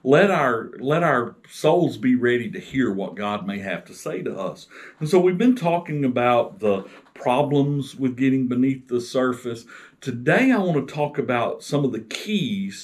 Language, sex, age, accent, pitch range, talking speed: English, male, 50-69, American, 120-155 Hz, 185 wpm